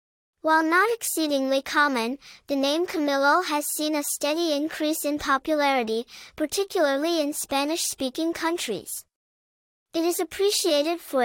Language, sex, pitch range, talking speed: English, male, 270-335 Hz, 115 wpm